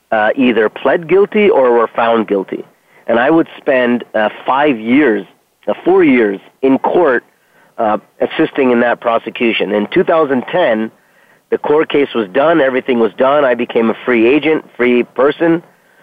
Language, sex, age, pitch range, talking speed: English, male, 40-59, 115-140 Hz, 155 wpm